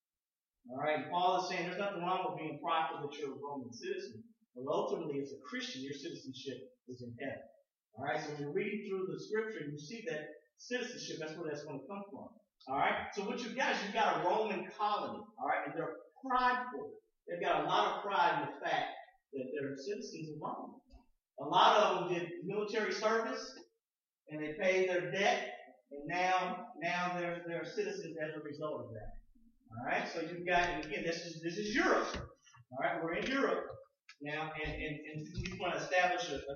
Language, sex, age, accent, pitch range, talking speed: English, male, 40-59, American, 165-235 Hz, 200 wpm